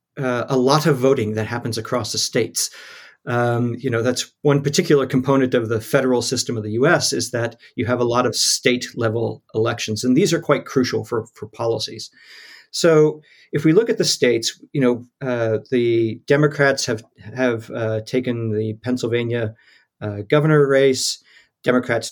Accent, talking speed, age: American, 175 wpm, 40-59